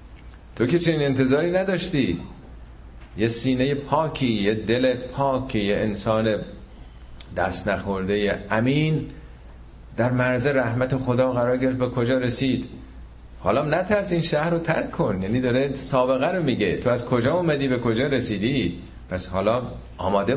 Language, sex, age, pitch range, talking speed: Persian, male, 40-59, 90-125 Hz, 135 wpm